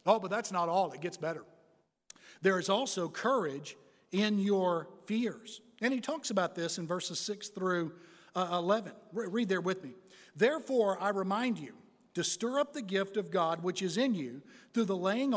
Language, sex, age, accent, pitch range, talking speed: English, male, 60-79, American, 175-230 Hz, 190 wpm